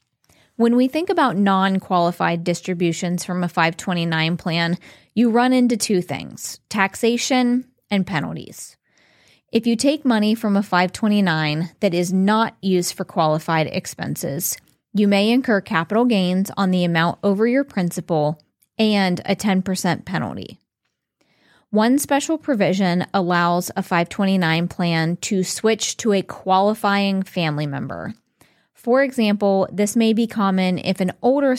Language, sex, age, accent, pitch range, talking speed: English, female, 20-39, American, 175-220 Hz, 135 wpm